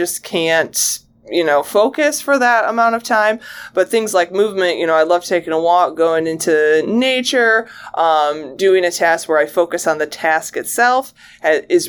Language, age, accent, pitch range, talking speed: English, 20-39, American, 170-235 Hz, 185 wpm